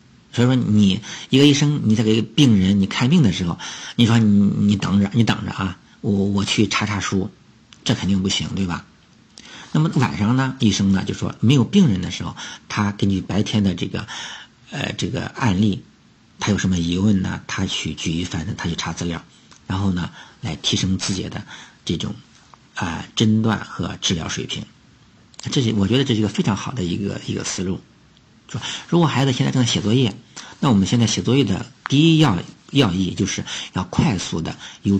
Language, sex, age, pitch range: Chinese, male, 50-69, 95-120 Hz